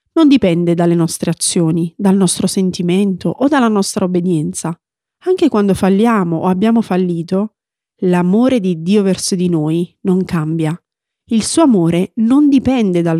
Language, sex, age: Italian, female, 40-59